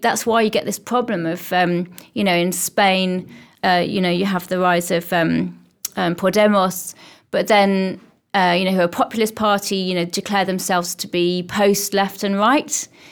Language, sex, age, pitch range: English, female, 30-49, 185-215 Hz